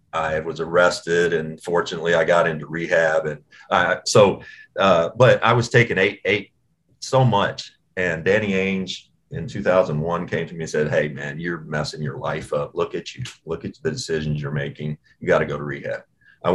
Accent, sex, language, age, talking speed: American, male, English, 40-59, 195 wpm